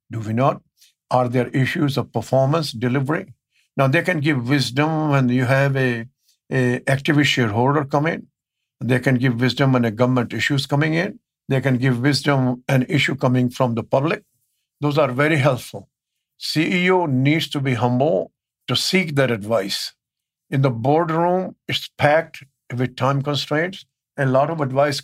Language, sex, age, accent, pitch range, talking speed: English, male, 50-69, Indian, 125-150 Hz, 165 wpm